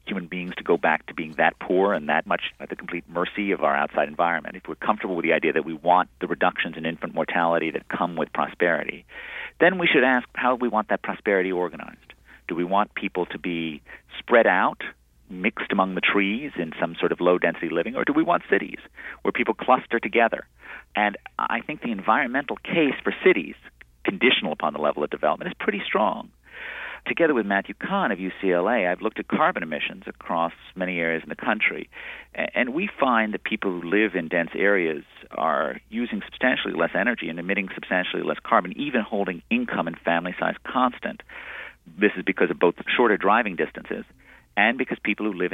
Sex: male